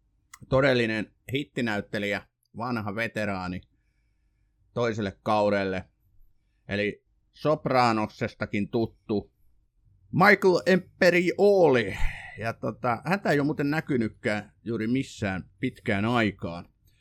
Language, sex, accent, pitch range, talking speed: Finnish, male, native, 105-135 Hz, 80 wpm